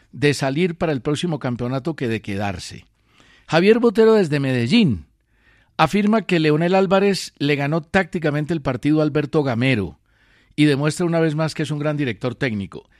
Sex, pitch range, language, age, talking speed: male, 120-160 Hz, Spanish, 50-69, 165 wpm